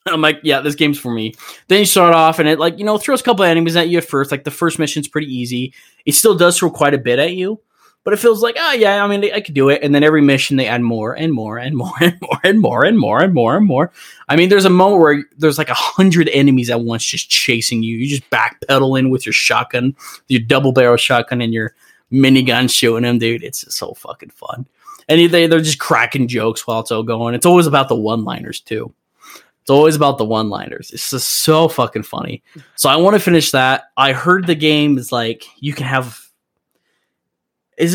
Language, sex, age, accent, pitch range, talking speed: English, male, 20-39, American, 120-170 Hz, 240 wpm